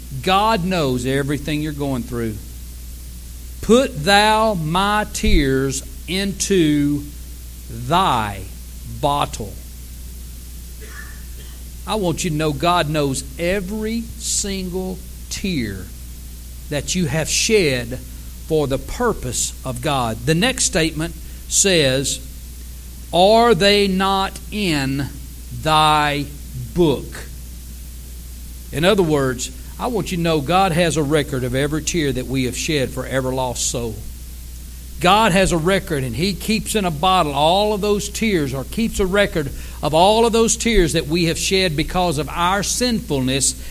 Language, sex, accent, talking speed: English, male, American, 130 wpm